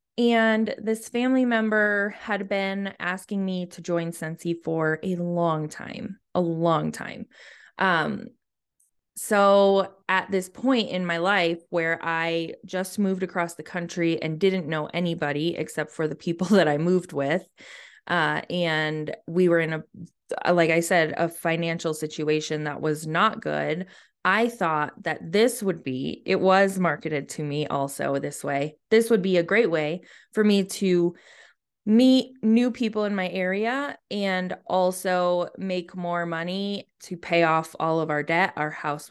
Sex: female